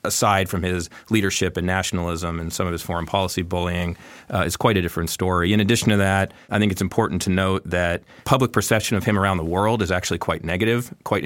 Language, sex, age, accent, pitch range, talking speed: English, male, 30-49, American, 90-110 Hz, 225 wpm